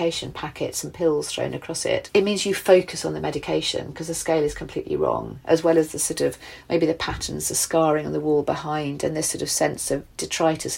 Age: 40-59